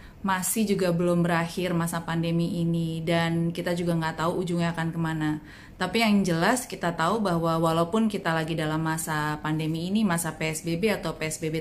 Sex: female